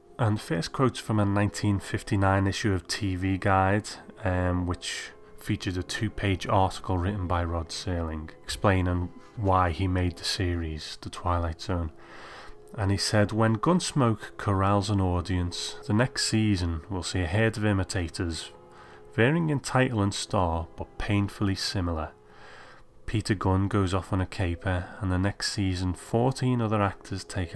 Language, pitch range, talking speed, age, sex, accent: English, 90-105 Hz, 150 wpm, 30-49, male, British